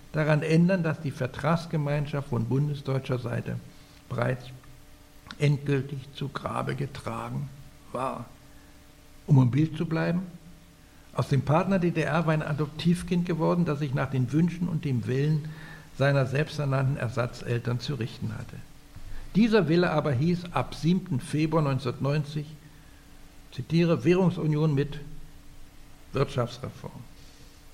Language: German